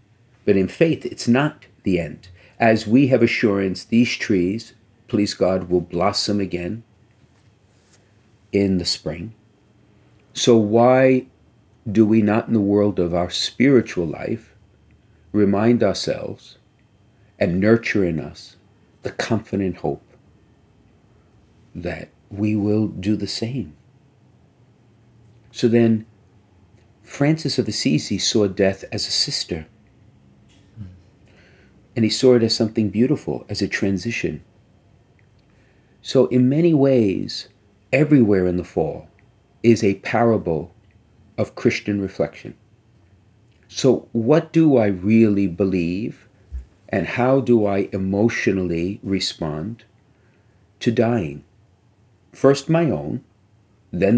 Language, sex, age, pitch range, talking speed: English, male, 50-69, 100-115 Hz, 110 wpm